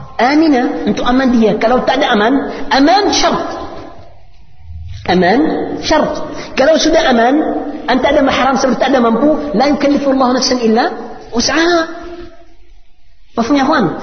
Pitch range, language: 240-285 Hz, Indonesian